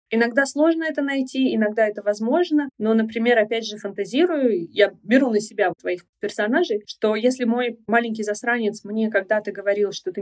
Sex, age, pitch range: female, 20-39, 210-270 Hz